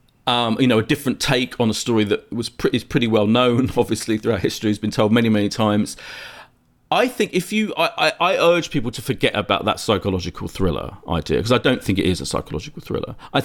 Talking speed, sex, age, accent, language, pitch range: 225 wpm, male, 40-59, British, English, 100-130 Hz